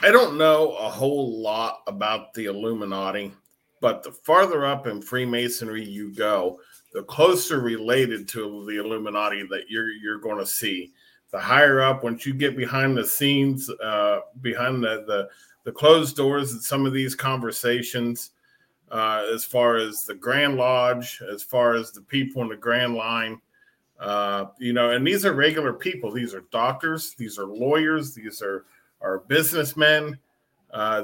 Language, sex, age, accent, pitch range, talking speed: English, male, 40-59, American, 110-135 Hz, 165 wpm